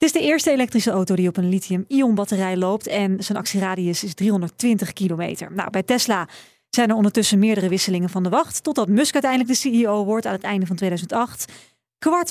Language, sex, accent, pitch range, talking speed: Dutch, female, Dutch, 190-245 Hz, 195 wpm